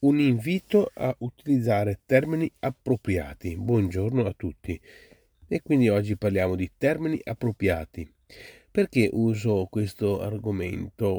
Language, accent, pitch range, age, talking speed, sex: Italian, native, 100-130 Hz, 30-49, 105 wpm, male